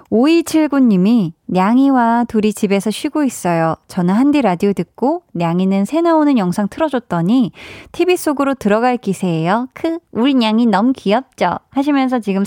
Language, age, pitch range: Korean, 20-39, 195-280 Hz